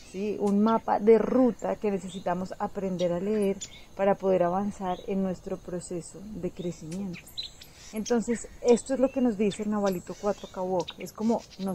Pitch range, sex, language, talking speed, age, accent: 190-230 Hz, female, Spanish, 165 wpm, 30-49, Colombian